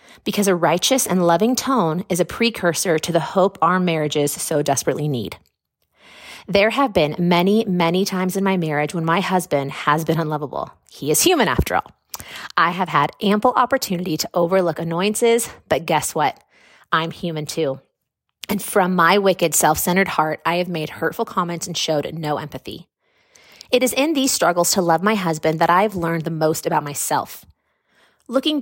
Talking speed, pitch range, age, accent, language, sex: 175 wpm, 160-205 Hz, 30-49, American, English, female